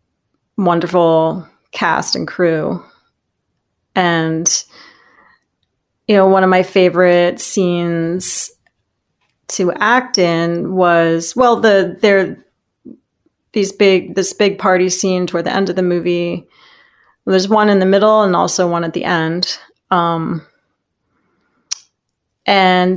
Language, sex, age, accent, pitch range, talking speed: English, female, 30-49, American, 175-210 Hz, 115 wpm